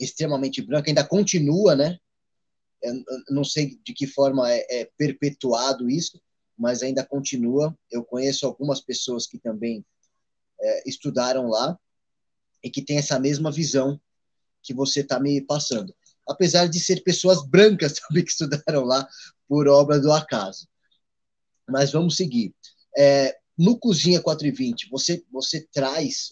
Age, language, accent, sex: 20-39, Portuguese, Brazilian, male